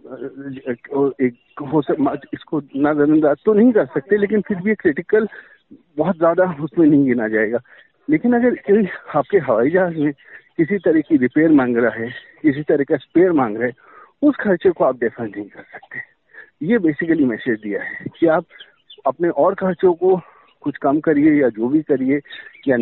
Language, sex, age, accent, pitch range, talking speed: Hindi, male, 50-69, native, 140-195 Hz, 185 wpm